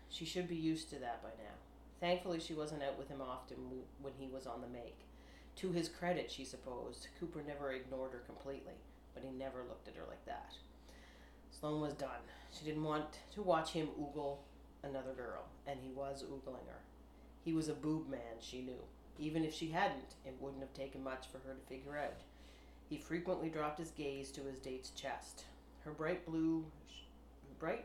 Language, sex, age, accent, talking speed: English, female, 40-59, American, 195 wpm